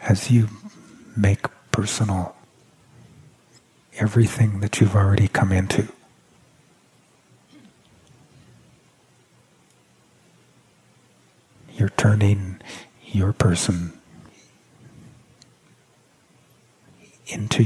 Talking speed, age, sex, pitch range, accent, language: 50 wpm, 50-69, male, 95-110 Hz, American, English